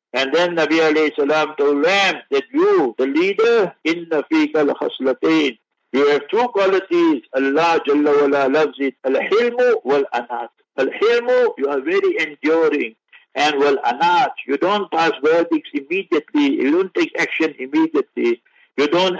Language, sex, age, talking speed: English, male, 60-79, 130 wpm